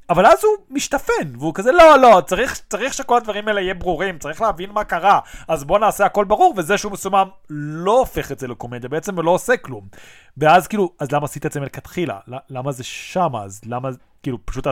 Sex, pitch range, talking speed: male, 145-225 Hz, 210 wpm